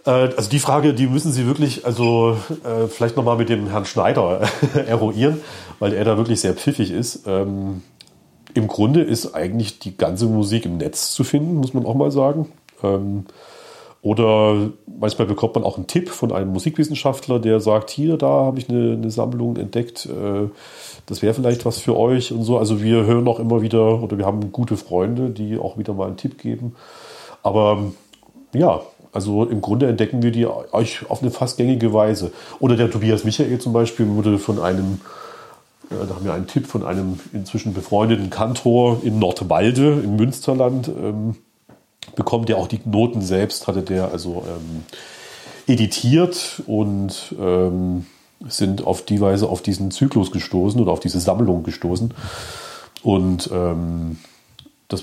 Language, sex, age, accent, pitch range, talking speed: German, male, 40-59, German, 100-120 Hz, 170 wpm